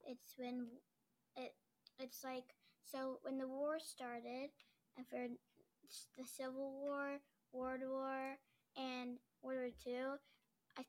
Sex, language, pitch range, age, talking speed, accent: female, English, 250-275 Hz, 10-29, 120 wpm, American